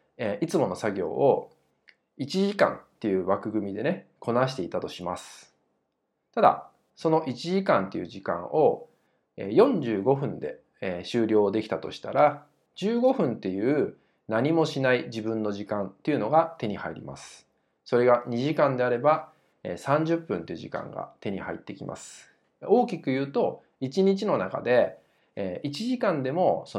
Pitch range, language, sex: 110-175 Hz, Japanese, male